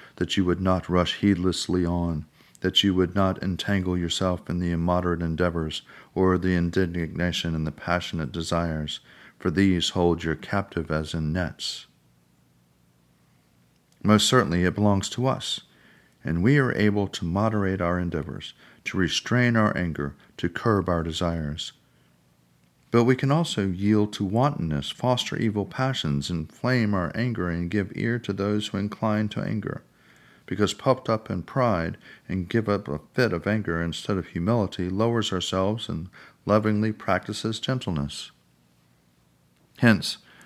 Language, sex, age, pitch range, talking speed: English, male, 40-59, 75-105 Hz, 145 wpm